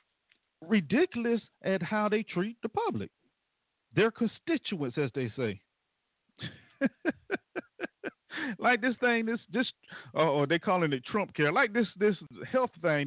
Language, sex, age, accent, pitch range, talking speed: English, male, 50-69, American, 175-275 Hz, 135 wpm